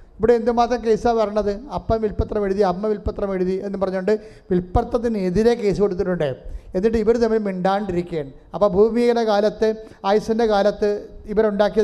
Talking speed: 100 wpm